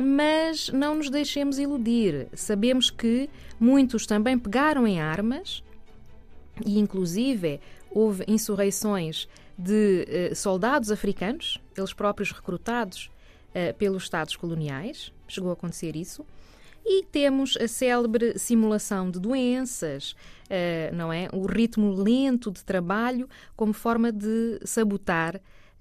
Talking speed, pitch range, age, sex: 105 wpm, 170-220 Hz, 20-39, female